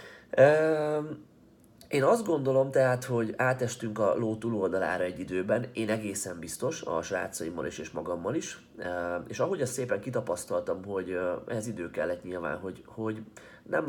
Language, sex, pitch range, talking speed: Hungarian, male, 90-120 Hz, 145 wpm